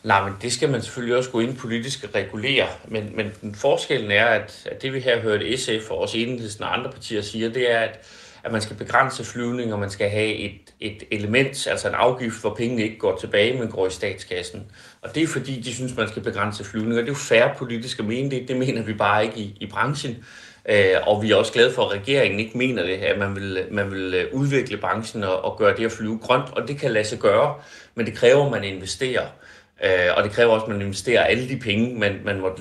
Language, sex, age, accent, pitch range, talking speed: Danish, male, 30-49, native, 105-130 Hz, 245 wpm